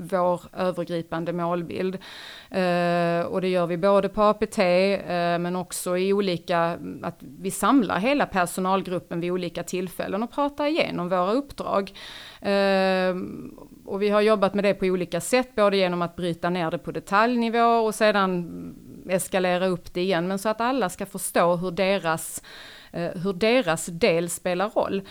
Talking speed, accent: 150 wpm, native